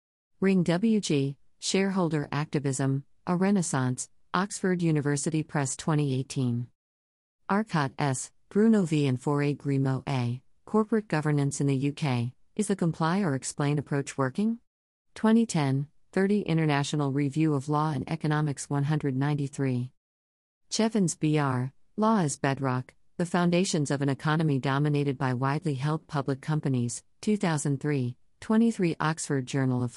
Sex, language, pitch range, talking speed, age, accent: female, English, 130-170 Hz, 120 wpm, 50-69, American